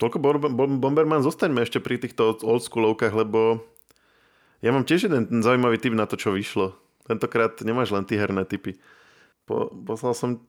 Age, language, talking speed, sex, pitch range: 20-39, Slovak, 165 wpm, male, 100-120 Hz